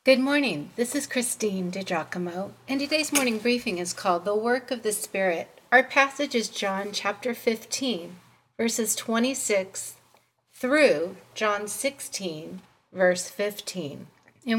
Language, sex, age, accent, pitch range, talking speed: English, female, 40-59, American, 185-245 Hz, 130 wpm